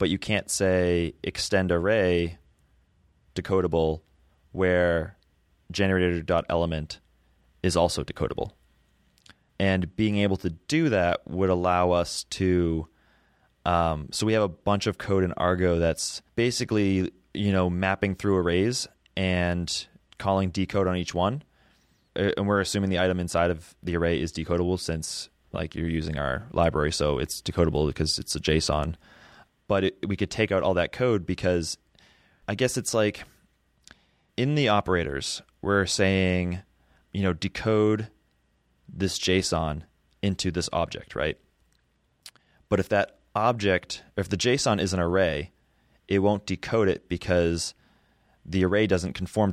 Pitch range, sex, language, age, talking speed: 85-100 Hz, male, English, 20-39, 140 wpm